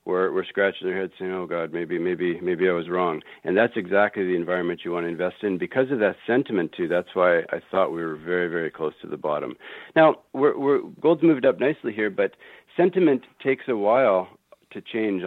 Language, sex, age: English, male, 50-69